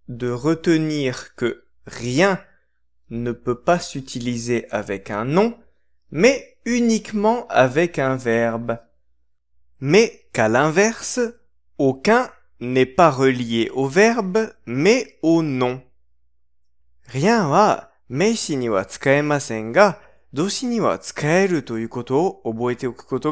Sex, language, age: male, Japanese, 20-39